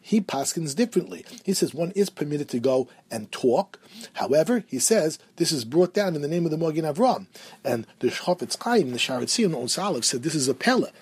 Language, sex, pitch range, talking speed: English, male, 125-175 Hz, 210 wpm